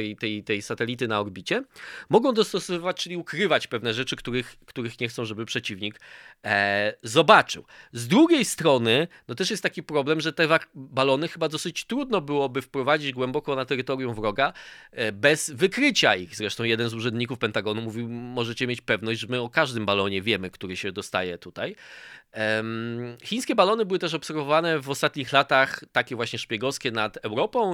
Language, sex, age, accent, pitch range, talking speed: Polish, male, 20-39, native, 110-150 Hz, 170 wpm